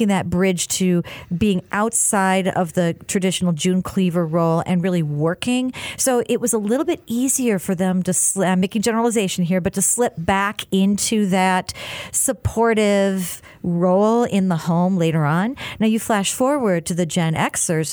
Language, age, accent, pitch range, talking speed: English, 40-59, American, 175-220 Hz, 165 wpm